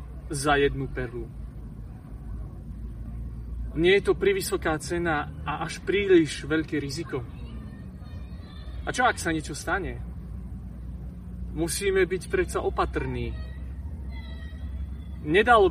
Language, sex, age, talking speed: Slovak, male, 30-49, 90 wpm